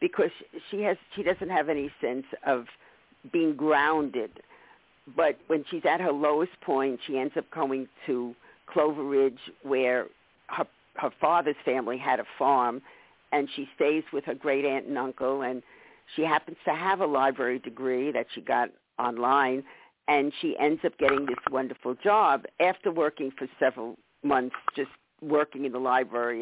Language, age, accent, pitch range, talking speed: English, 50-69, American, 130-180 Hz, 160 wpm